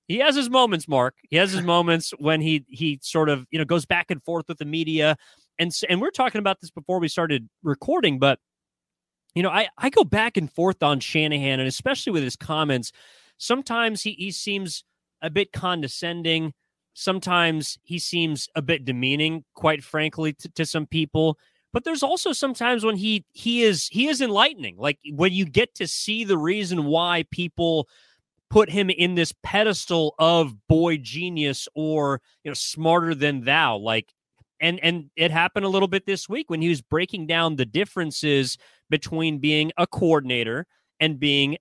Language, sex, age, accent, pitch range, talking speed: English, male, 30-49, American, 150-185 Hz, 180 wpm